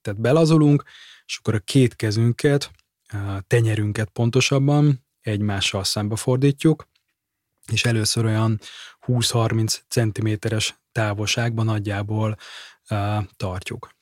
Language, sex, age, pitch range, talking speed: Hungarian, male, 20-39, 105-125 Hz, 90 wpm